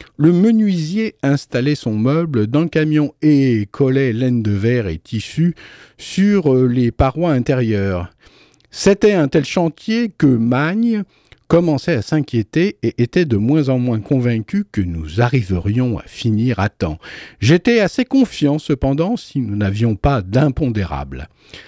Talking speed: 140 wpm